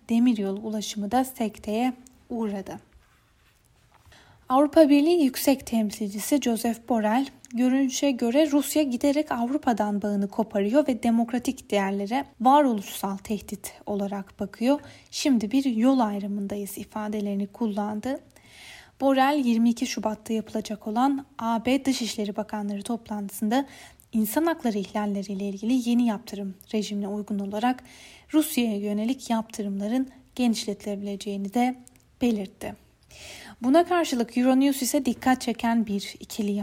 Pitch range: 205-260 Hz